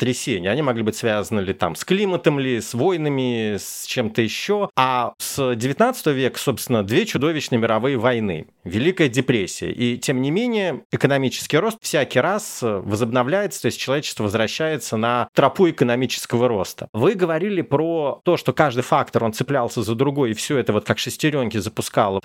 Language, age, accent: Russian, 30-49, native